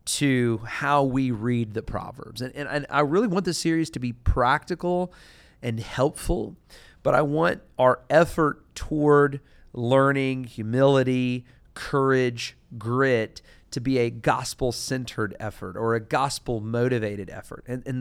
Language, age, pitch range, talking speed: English, 40-59, 110-135 Hz, 135 wpm